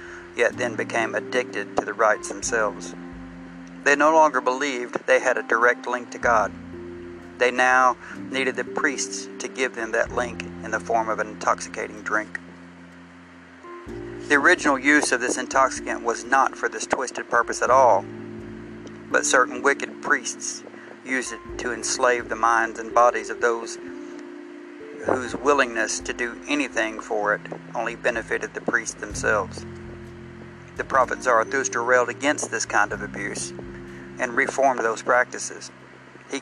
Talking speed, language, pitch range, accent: 150 wpm, English, 90-145 Hz, American